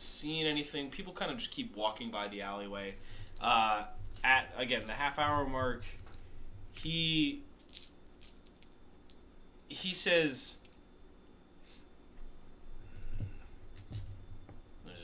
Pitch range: 95-120 Hz